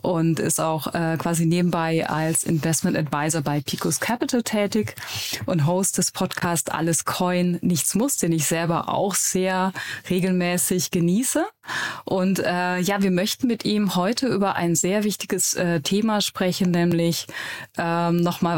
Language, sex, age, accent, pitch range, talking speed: German, female, 20-39, German, 165-195 Hz, 150 wpm